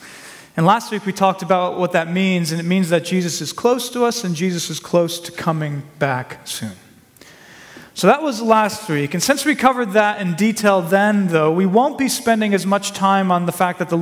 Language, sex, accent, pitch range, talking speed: English, male, American, 170-220 Hz, 225 wpm